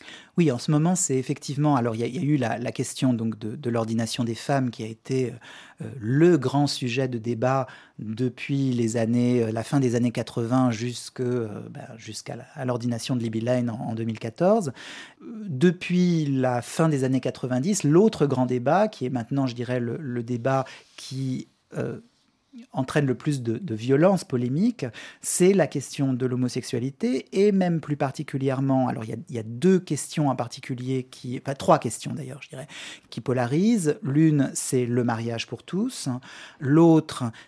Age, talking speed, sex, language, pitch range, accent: 40-59, 185 wpm, male, French, 125-155 Hz, French